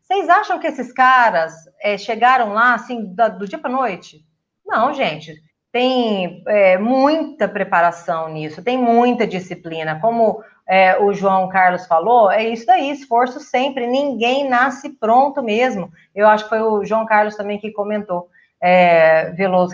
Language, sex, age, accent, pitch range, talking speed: Portuguese, female, 30-49, Brazilian, 190-270 Hz, 160 wpm